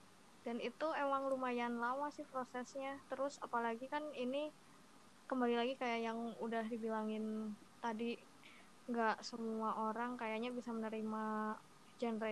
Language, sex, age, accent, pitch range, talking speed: Indonesian, female, 20-39, native, 220-240 Hz, 120 wpm